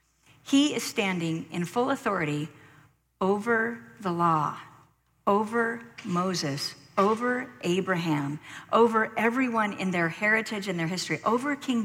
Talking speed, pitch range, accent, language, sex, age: 115 wpm, 160-225 Hz, American, English, female, 50-69